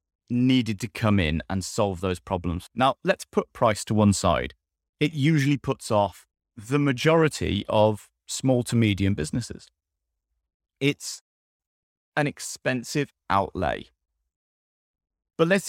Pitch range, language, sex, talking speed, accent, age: 85-130 Hz, English, male, 120 wpm, British, 30-49